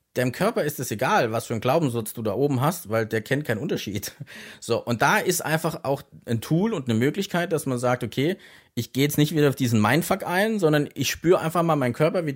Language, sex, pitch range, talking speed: German, male, 120-155 Hz, 240 wpm